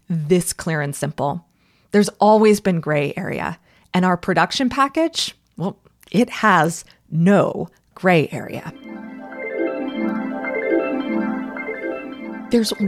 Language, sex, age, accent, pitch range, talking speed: English, female, 20-39, American, 175-245 Hz, 95 wpm